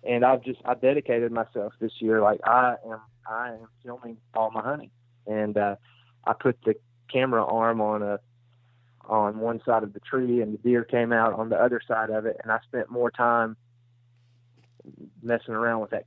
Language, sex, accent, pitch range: English, male, American, 110-125 Hz